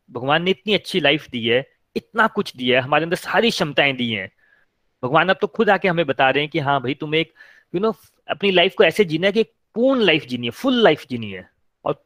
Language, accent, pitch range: Hindi, native, 140-200 Hz